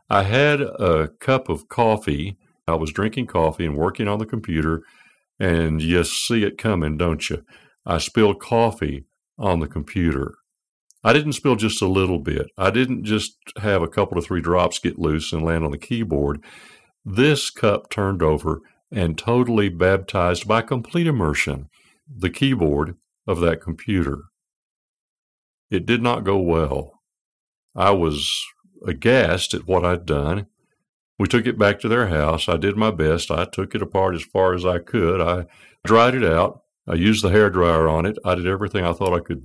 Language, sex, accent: English, male, American